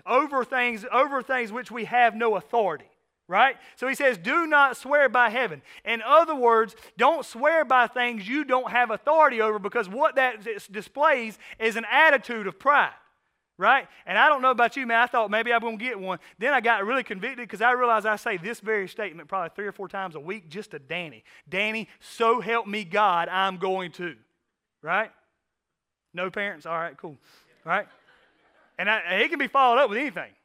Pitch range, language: 175-250 Hz, English